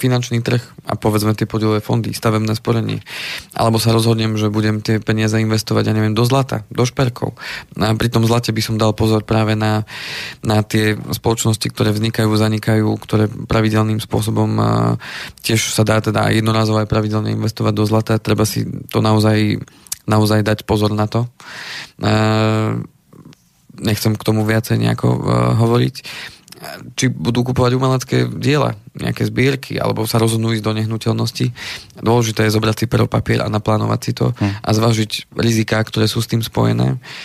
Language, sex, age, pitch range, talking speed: Slovak, male, 20-39, 110-115 Hz, 160 wpm